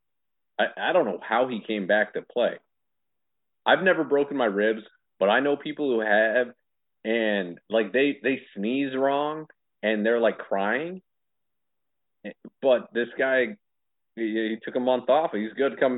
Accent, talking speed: American, 165 wpm